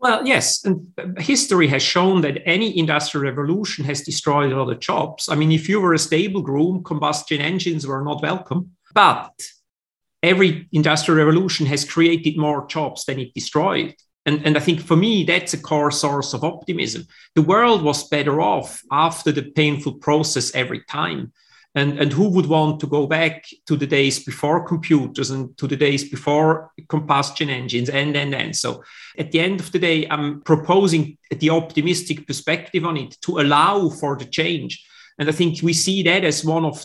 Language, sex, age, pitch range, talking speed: English, male, 40-59, 145-170 Hz, 185 wpm